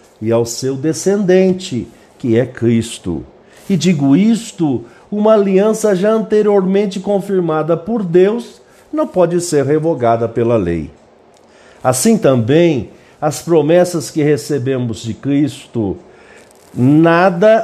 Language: Portuguese